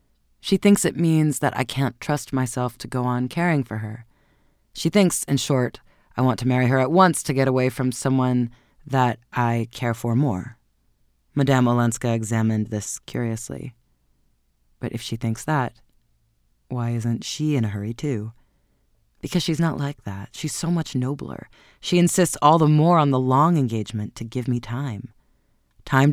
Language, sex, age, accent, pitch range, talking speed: English, female, 30-49, American, 110-140 Hz, 175 wpm